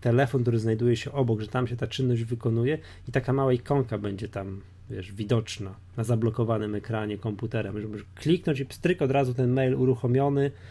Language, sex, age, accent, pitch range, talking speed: Polish, male, 20-39, native, 105-130 Hz, 185 wpm